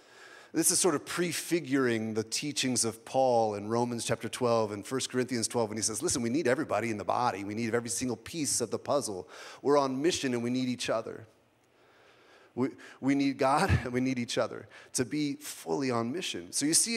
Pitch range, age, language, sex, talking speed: 110-140 Hz, 30-49, English, male, 210 wpm